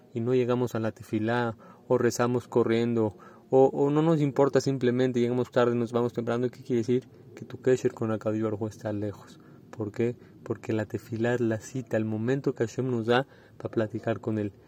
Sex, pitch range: male, 110-125 Hz